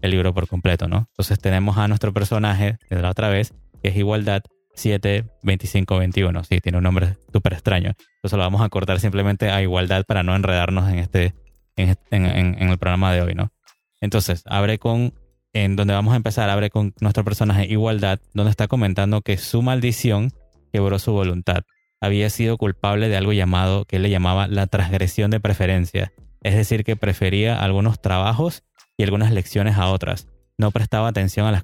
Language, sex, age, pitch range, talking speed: Spanish, male, 20-39, 95-110 Hz, 190 wpm